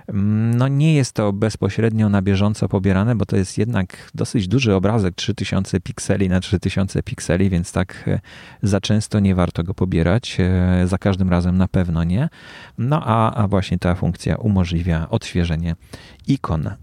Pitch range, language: 95-125 Hz, Polish